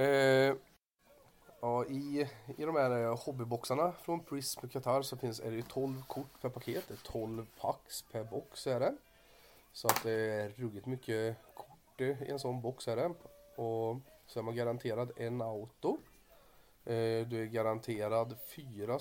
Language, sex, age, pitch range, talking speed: Swedish, male, 30-49, 115-135 Hz, 145 wpm